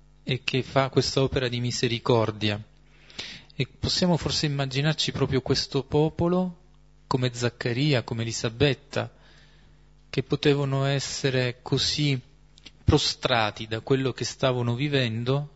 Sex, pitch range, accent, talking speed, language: male, 115-145 Hz, native, 110 wpm, Italian